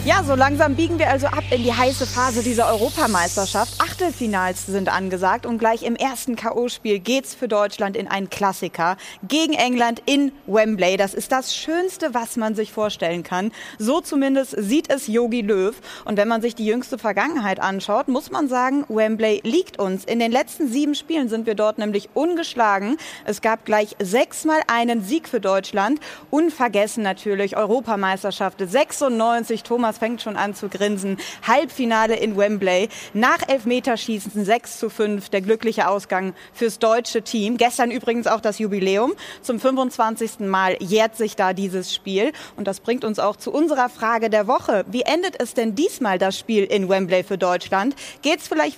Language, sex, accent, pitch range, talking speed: German, female, German, 205-260 Hz, 175 wpm